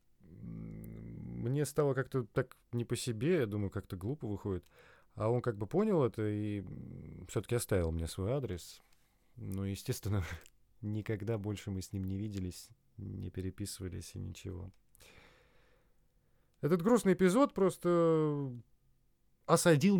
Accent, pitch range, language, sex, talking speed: native, 95-130 Hz, Russian, male, 125 wpm